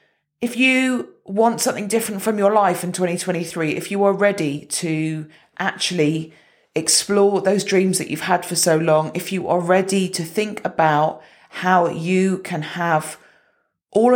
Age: 40-59